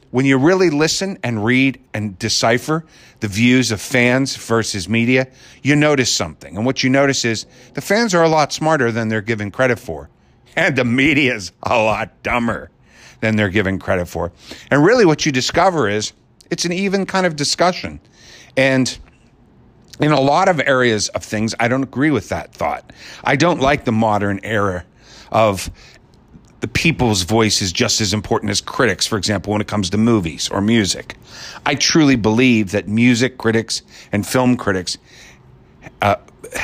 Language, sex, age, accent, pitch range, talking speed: English, male, 50-69, American, 105-130 Hz, 175 wpm